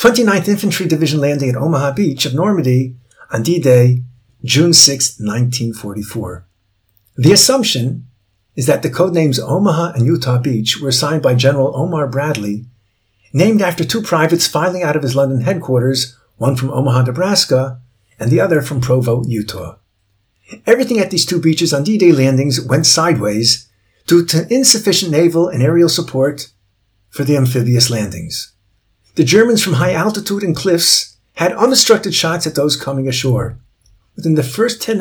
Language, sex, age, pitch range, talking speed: English, male, 50-69, 120-165 Hz, 155 wpm